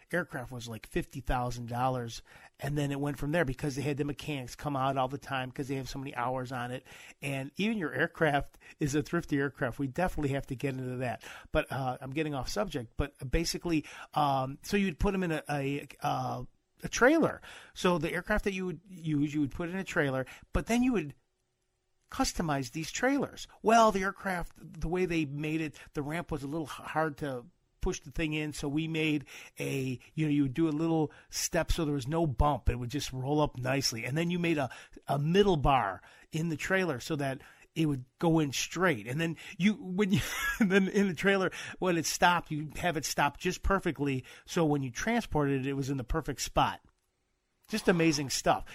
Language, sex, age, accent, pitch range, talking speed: English, male, 50-69, American, 135-175 Hz, 215 wpm